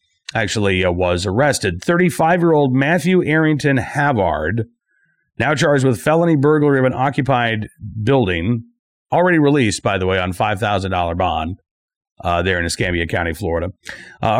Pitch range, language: 110-150 Hz, English